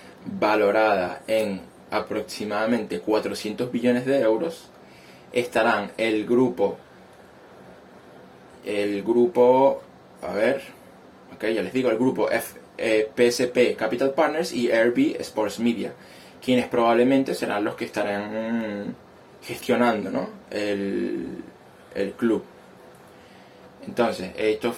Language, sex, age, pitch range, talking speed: Spanish, male, 20-39, 100-125 Hz, 105 wpm